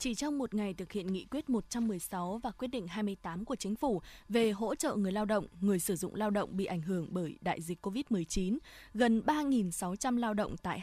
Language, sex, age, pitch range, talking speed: Vietnamese, female, 20-39, 185-250 Hz, 215 wpm